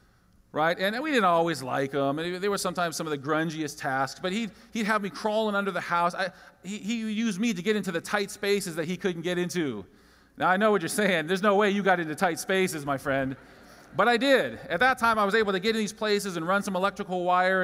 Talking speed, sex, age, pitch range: 250 wpm, male, 40-59, 145-210 Hz